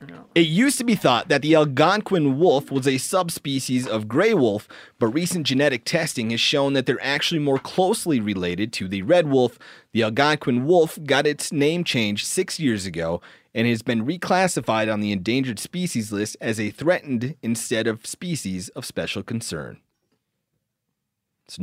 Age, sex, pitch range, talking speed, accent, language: 30-49, male, 115-180 Hz, 165 wpm, American, English